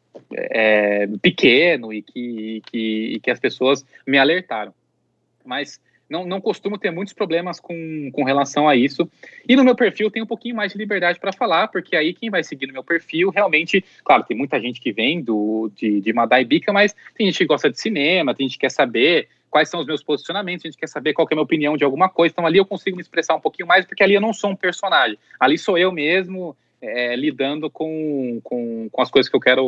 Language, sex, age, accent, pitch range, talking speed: Portuguese, male, 20-39, Brazilian, 125-185 Hz, 235 wpm